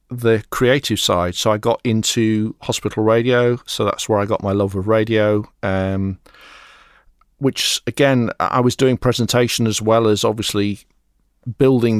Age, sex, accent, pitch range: 40-59, male, British, 105-120 Hz